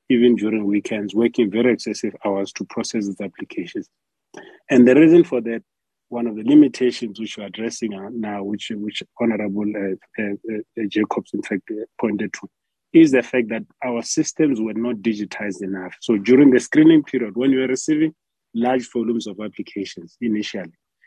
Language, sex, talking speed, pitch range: English, male, 170 wpm, 105-125 Hz